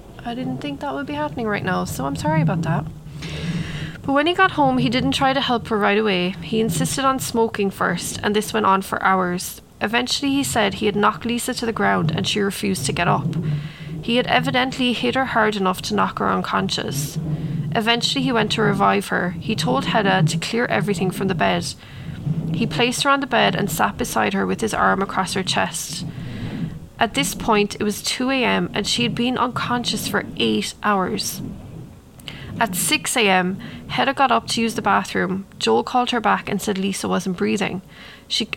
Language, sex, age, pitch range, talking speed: English, female, 20-39, 175-230 Hz, 205 wpm